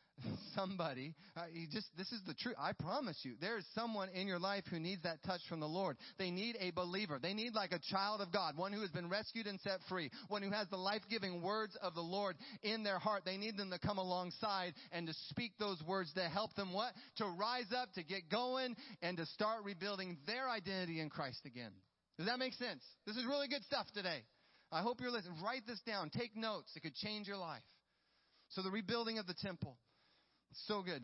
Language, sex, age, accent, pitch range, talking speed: English, male, 30-49, American, 155-210 Hz, 225 wpm